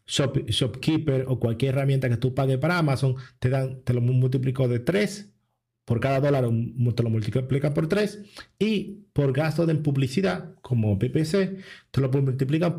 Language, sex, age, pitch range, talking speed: Spanish, male, 40-59, 120-155 Hz, 160 wpm